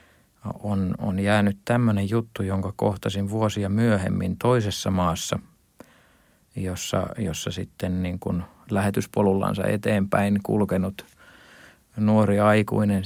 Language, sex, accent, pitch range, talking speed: Finnish, male, native, 100-115 Hz, 95 wpm